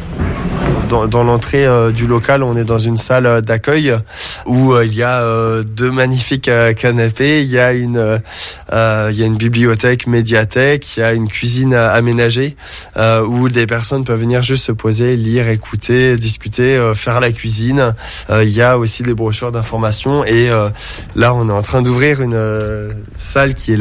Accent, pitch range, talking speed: French, 105-120 Hz, 160 wpm